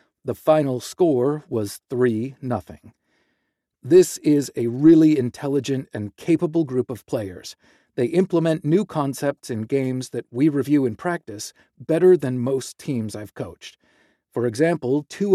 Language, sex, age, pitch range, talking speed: English, male, 40-59, 120-160 Hz, 135 wpm